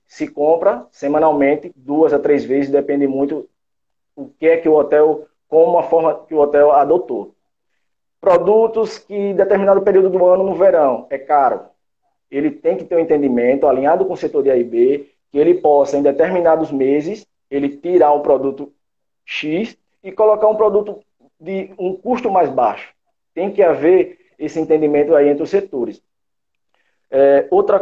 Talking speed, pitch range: 165 wpm, 150-215 Hz